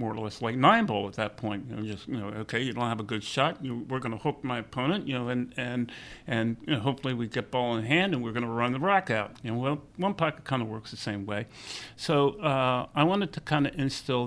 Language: English